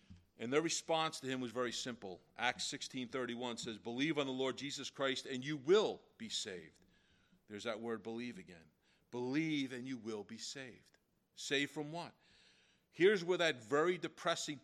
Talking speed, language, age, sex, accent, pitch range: 170 wpm, English, 40-59, male, American, 120-160 Hz